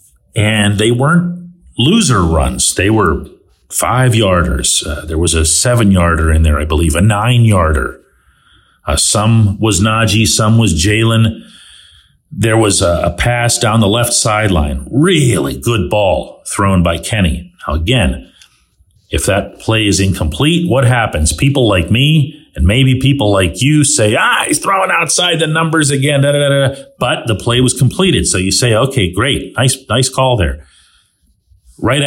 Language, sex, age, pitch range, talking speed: English, male, 50-69, 95-135 Hz, 155 wpm